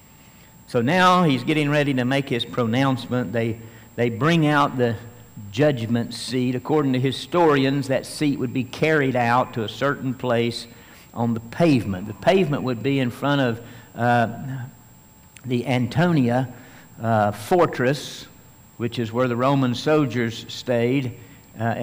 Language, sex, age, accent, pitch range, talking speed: English, male, 60-79, American, 115-135 Hz, 145 wpm